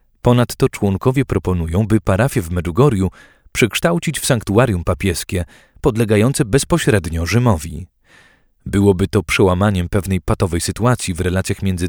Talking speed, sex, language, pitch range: 115 wpm, male, Polish, 95-125 Hz